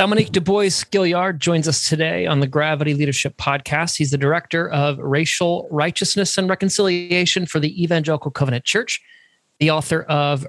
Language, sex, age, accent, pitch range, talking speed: English, male, 30-49, American, 145-185 Hz, 150 wpm